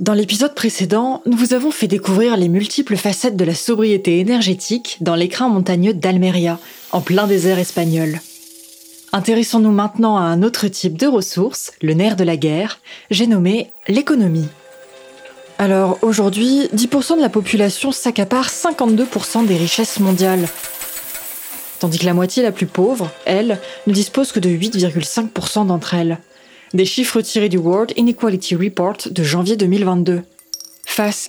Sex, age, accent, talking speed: female, 20-39, French, 145 wpm